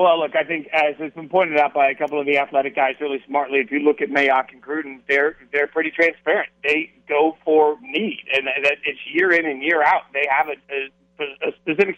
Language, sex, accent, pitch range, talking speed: English, male, American, 145-165 Hz, 225 wpm